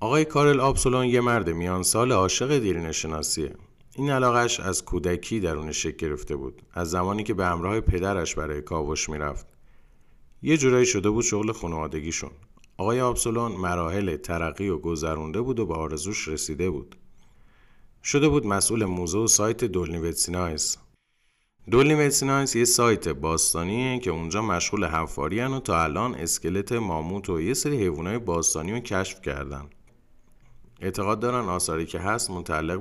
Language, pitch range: Persian, 80-115 Hz